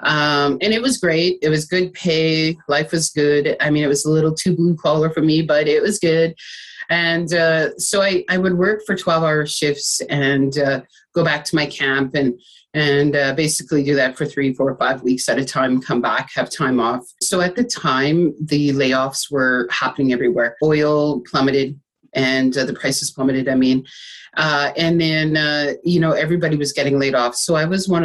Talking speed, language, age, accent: 210 wpm, English, 30-49, American